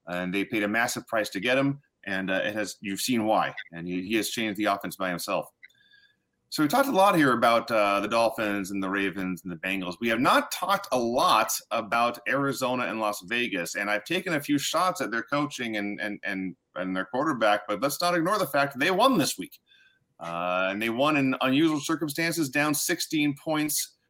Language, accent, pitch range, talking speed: English, American, 105-140 Hz, 220 wpm